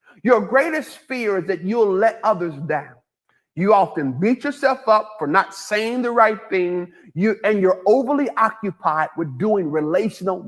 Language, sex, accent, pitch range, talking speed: English, male, American, 175-230 Hz, 160 wpm